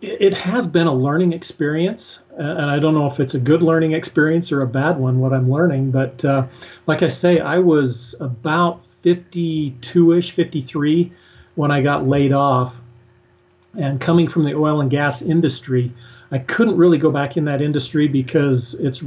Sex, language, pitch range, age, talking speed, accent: male, English, 130-160 Hz, 40-59, 185 wpm, American